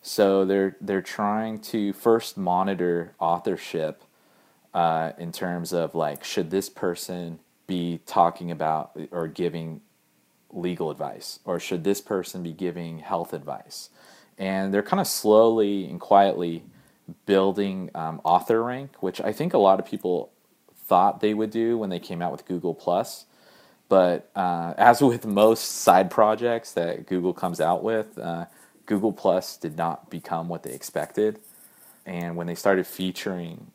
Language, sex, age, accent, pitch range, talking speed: English, male, 30-49, American, 85-100 Hz, 155 wpm